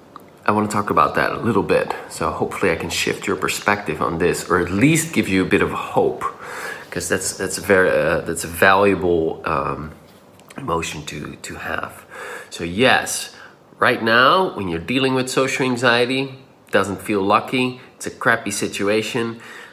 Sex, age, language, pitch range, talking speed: male, 30-49, English, 100-120 Hz, 175 wpm